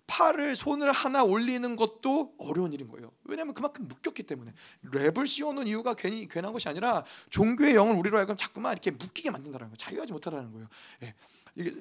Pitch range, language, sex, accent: 180-250 Hz, Korean, male, native